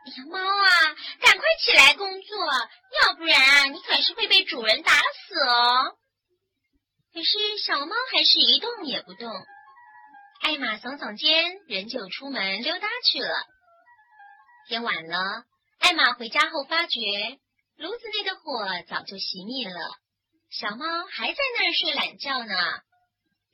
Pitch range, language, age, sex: 235-390 Hz, Chinese, 30-49, male